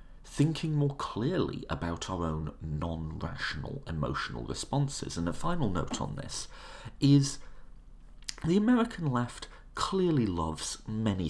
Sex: male